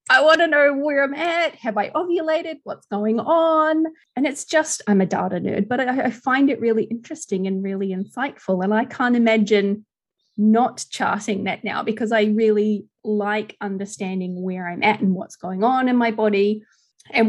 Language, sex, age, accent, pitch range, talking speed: English, female, 30-49, Australian, 190-245 Hz, 185 wpm